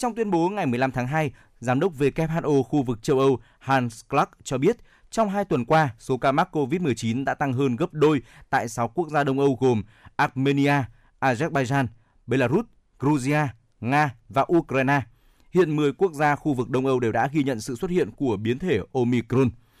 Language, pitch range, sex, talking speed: Vietnamese, 120-150 Hz, male, 195 wpm